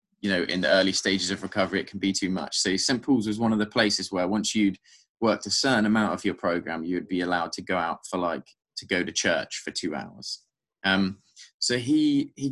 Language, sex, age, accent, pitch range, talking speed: English, male, 20-39, British, 95-115 Hz, 245 wpm